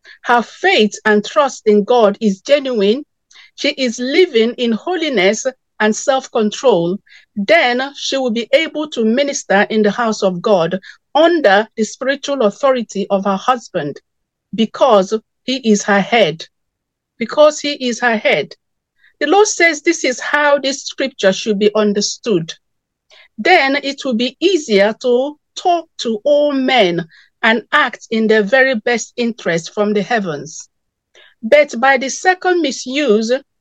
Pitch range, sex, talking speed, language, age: 210-290 Hz, female, 145 wpm, English, 50-69